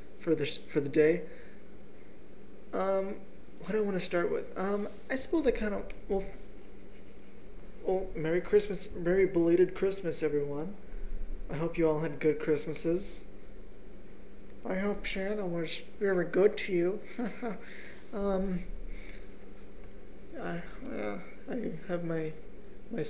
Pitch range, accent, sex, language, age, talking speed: 160-205 Hz, American, male, English, 20-39, 125 wpm